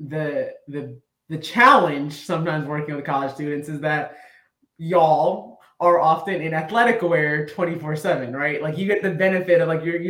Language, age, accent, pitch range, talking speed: English, 20-39, American, 140-160 Hz, 170 wpm